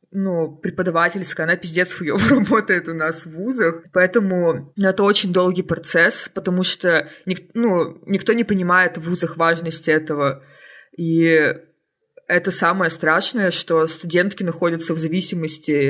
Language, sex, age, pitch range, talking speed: Russian, female, 20-39, 160-185 Hz, 130 wpm